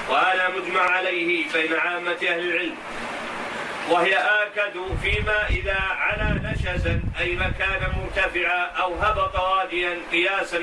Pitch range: 175-190 Hz